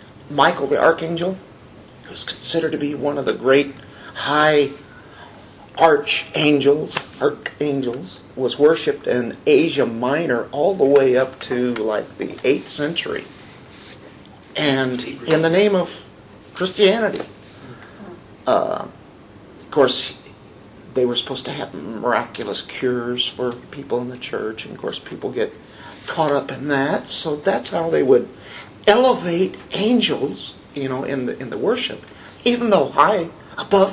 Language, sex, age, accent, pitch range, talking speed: English, male, 50-69, American, 125-175 Hz, 135 wpm